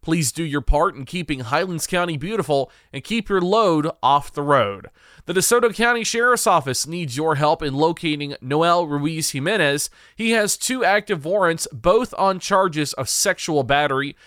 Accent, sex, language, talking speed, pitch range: American, male, English, 170 wpm, 145-195 Hz